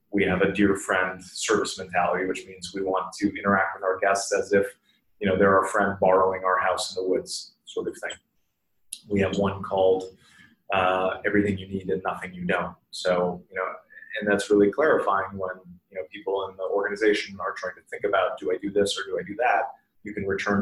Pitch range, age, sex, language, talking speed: 95-115 Hz, 30-49, male, English, 220 wpm